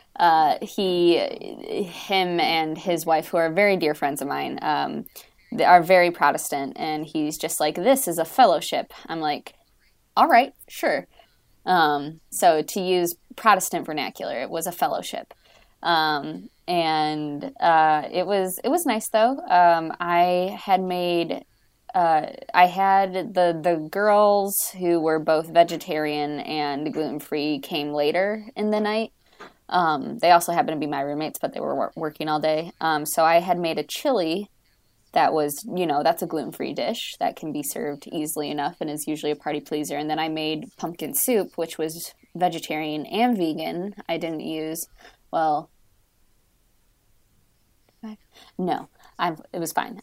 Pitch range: 150-180 Hz